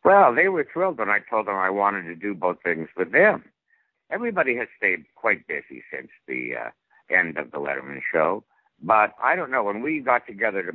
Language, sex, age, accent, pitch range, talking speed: English, male, 60-79, American, 95-125 Hz, 210 wpm